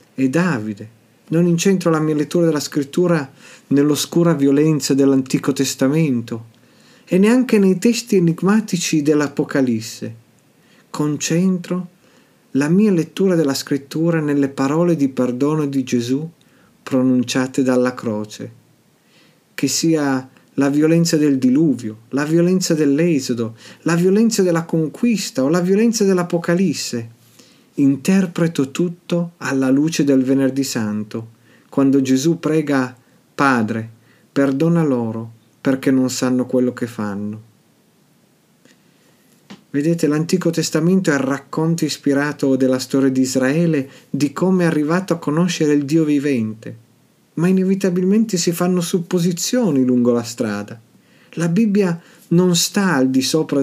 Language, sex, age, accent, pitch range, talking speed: Italian, male, 40-59, native, 130-170 Hz, 115 wpm